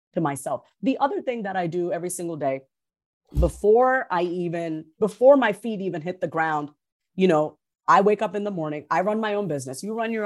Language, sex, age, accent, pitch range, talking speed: English, female, 40-59, American, 160-220 Hz, 215 wpm